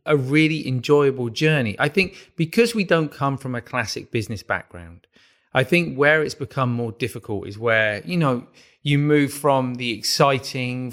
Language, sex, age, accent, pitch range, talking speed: English, male, 30-49, British, 115-150 Hz, 170 wpm